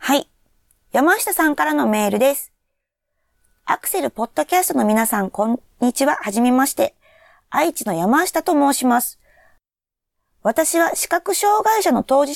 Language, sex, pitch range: Japanese, female, 210-320 Hz